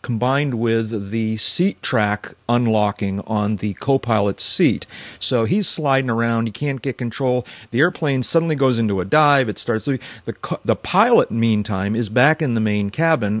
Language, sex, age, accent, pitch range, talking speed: English, male, 40-59, American, 100-130 Hz, 165 wpm